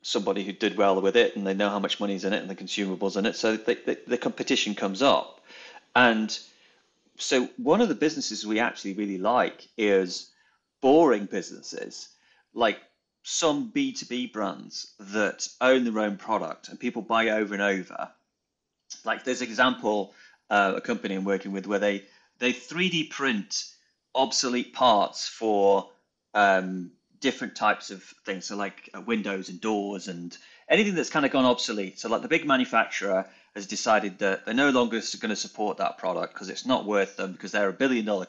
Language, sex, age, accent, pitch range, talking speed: English, male, 30-49, British, 100-125 Hz, 180 wpm